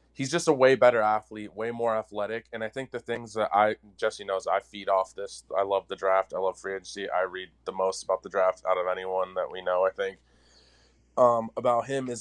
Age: 20-39